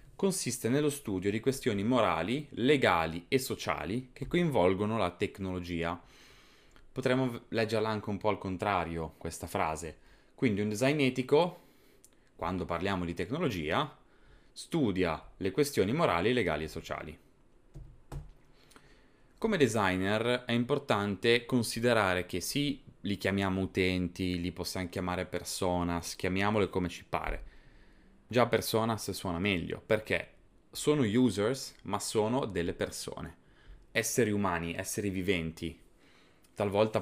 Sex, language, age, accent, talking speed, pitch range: male, Italian, 20-39, native, 115 wpm, 90-120 Hz